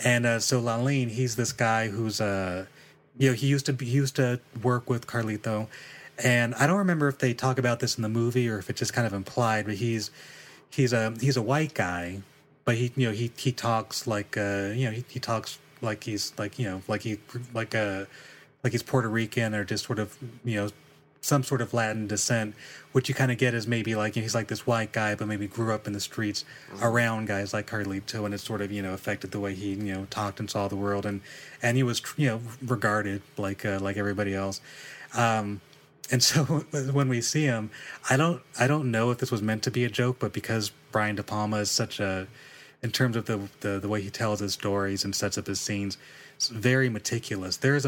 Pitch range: 105-125 Hz